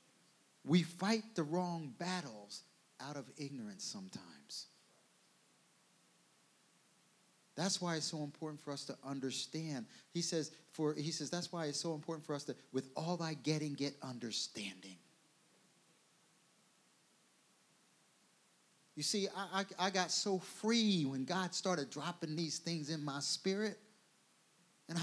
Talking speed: 130 wpm